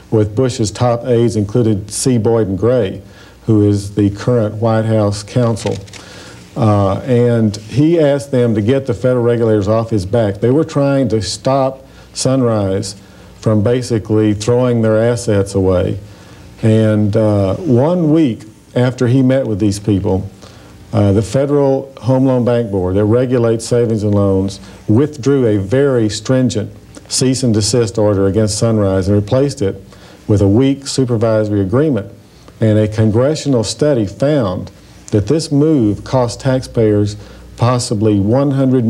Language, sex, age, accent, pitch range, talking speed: English, male, 50-69, American, 105-125 Hz, 145 wpm